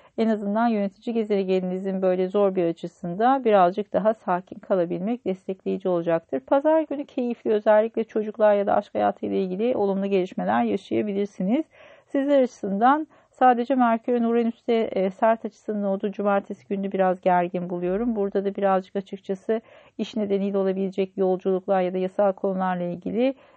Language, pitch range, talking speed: Turkish, 185-230 Hz, 135 wpm